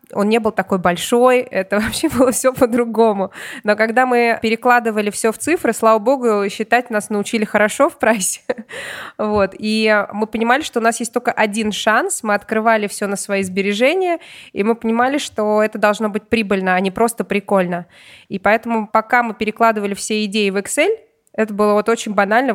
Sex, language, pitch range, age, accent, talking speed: female, Russian, 205-240 Hz, 20-39, native, 180 wpm